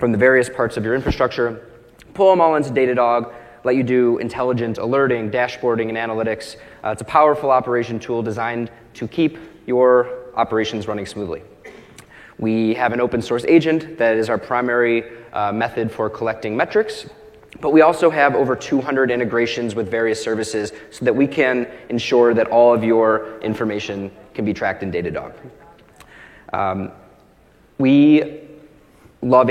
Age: 20-39